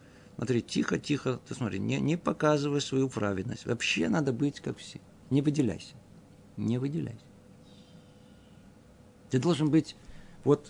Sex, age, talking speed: male, 50-69, 130 wpm